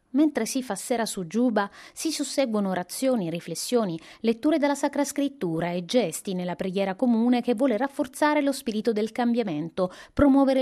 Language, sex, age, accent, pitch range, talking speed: Italian, female, 30-49, native, 190-265 Hz, 155 wpm